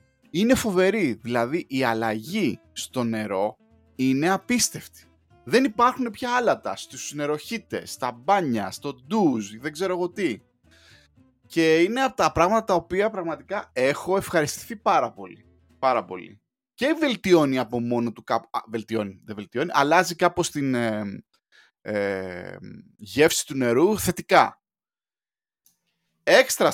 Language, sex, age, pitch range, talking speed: Greek, male, 20-39, 115-170 Hz, 130 wpm